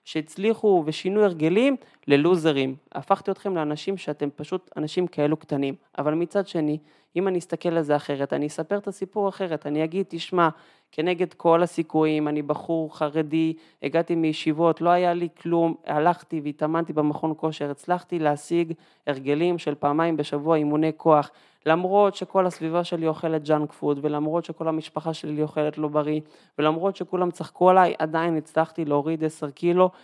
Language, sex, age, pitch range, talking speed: Hebrew, male, 20-39, 150-180 Hz, 150 wpm